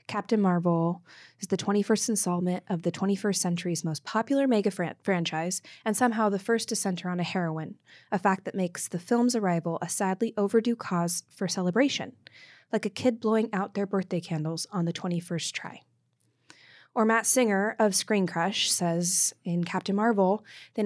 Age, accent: 20-39, American